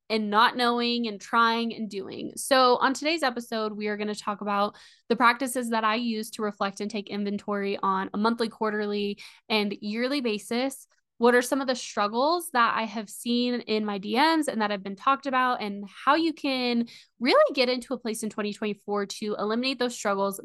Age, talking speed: 10-29, 200 wpm